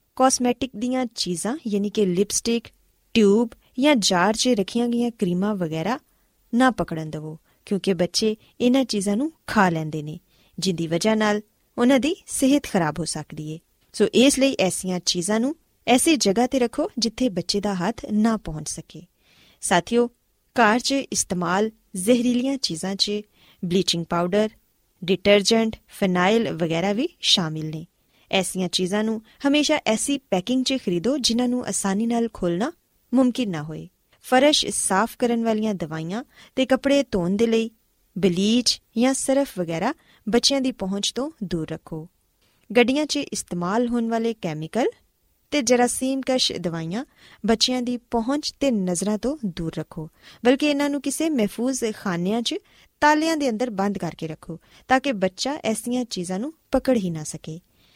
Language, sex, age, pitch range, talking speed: Punjabi, female, 20-39, 180-255 Hz, 135 wpm